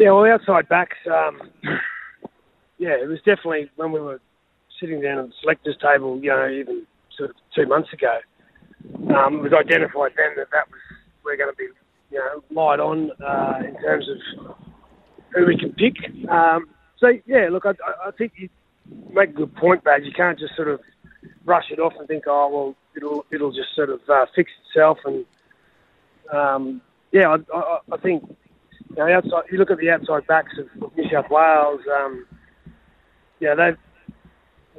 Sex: male